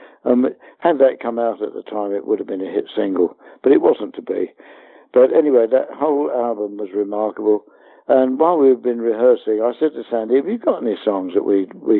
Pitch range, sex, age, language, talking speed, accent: 105-140 Hz, male, 60-79, English, 225 wpm, British